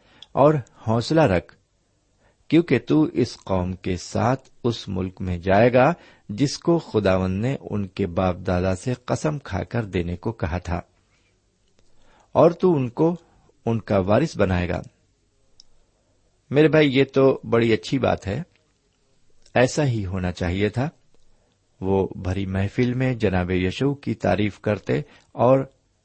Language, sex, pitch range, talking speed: Urdu, male, 95-125 Hz, 140 wpm